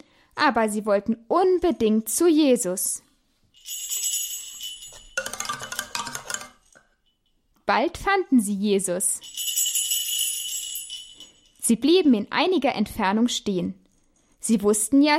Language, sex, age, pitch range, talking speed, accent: German, female, 10-29, 205-300 Hz, 75 wpm, German